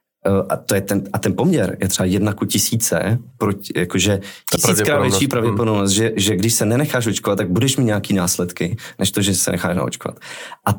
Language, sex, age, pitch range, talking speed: Czech, male, 20-39, 95-120 Hz, 190 wpm